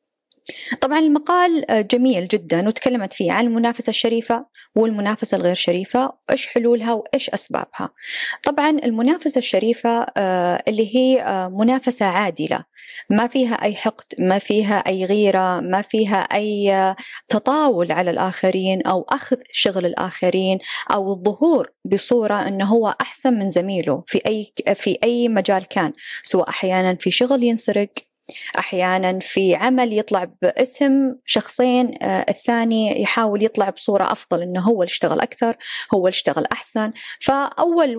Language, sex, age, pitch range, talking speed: Arabic, female, 20-39, 190-255 Hz, 130 wpm